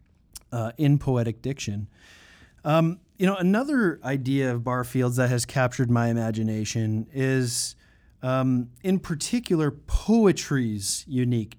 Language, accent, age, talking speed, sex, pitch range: English, American, 30-49, 115 wpm, male, 120-155 Hz